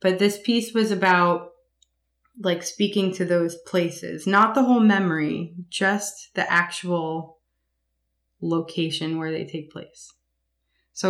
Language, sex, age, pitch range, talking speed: English, female, 20-39, 165-180 Hz, 125 wpm